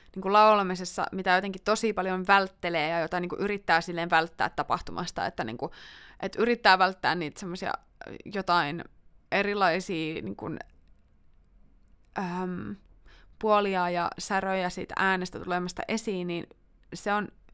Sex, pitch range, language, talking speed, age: female, 175-215 Hz, Finnish, 110 wpm, 20-39